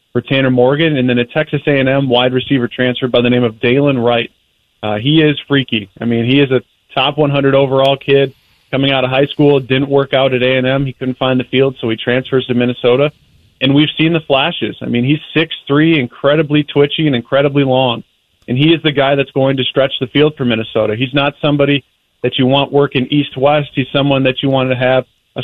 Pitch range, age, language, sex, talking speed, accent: 125-140 Hz, 30-49, English, male, 220 wpm, American